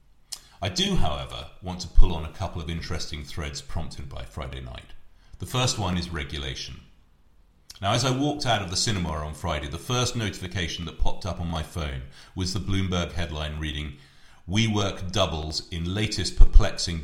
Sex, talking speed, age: male, 175 wpm, 40-59